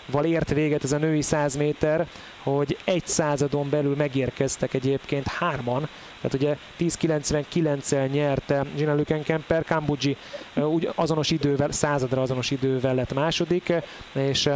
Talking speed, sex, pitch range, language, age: 125 wpm, male, 135-155 Hz, Hungarian, 30-49